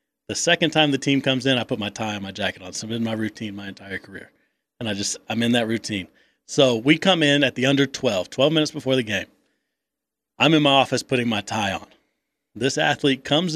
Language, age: English, 30-49